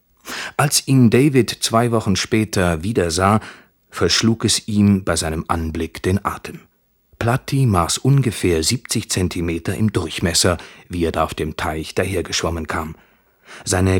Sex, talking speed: male, 135 wpm